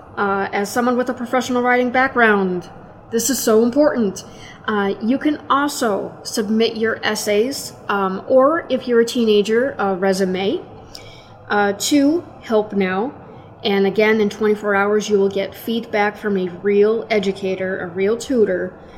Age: 30-49